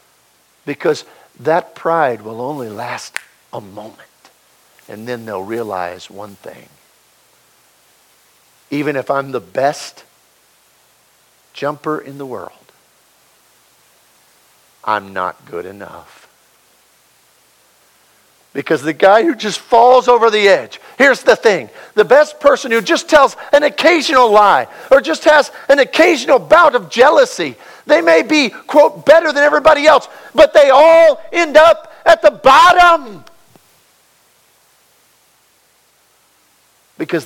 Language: English